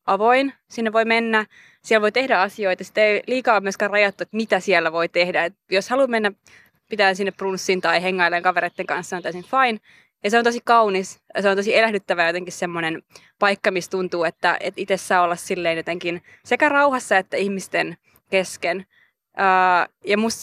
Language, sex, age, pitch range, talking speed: Finnish, female, 20-39, 185-215 Hz, 180 wpm